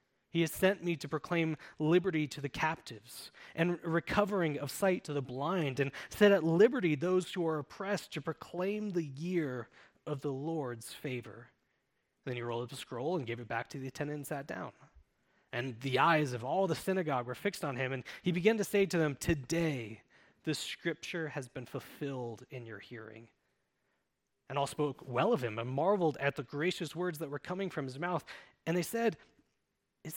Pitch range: 135-180 Hz